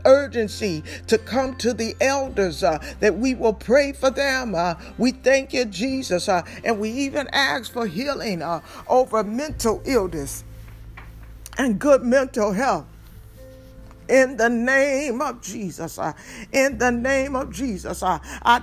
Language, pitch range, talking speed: English, 205-270 Hz, 150 wpm